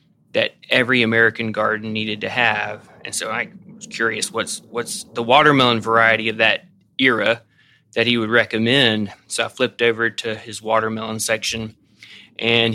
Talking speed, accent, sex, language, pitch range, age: 155 wpm, American, male, English, 110-120 Hz, 20-39